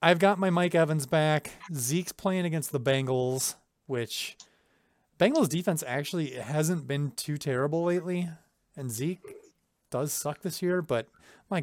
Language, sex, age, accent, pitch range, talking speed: English, male, 30-49, American, 125-165 Hz, 145 wpm